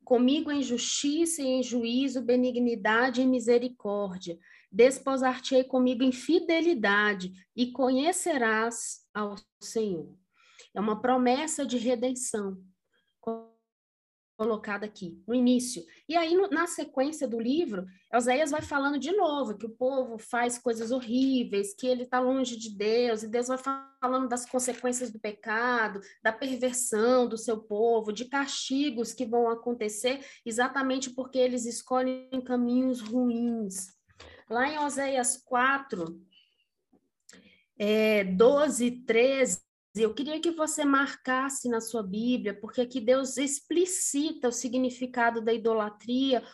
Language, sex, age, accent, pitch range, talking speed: Portuguese, female, 20-39, Brazilian, 220-265 Hz, 130 wpm